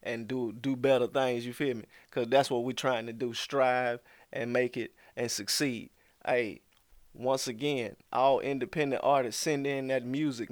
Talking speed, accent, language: 175 wpm, American, English